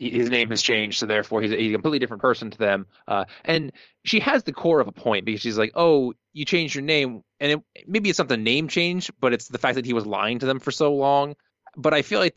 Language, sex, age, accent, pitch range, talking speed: English, male, 20-39, American, 115-150 Hz, 275 wpm